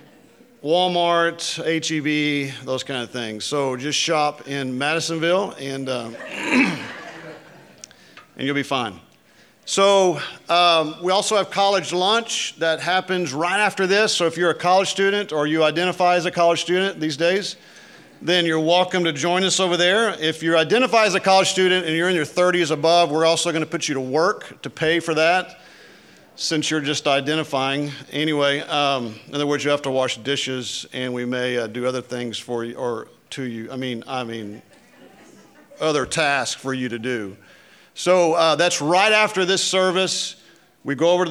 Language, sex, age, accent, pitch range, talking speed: English, male, 40-59, American, 135-175 Hz, 180 wpm